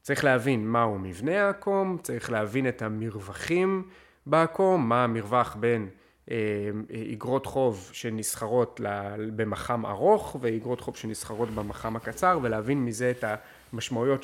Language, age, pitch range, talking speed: Hebrew, 30-49, 110-155 Hz, 120 wpm